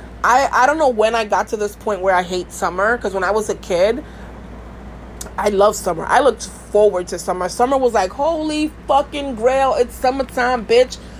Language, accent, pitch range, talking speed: English, American, 190-235 Hz, 200 wpm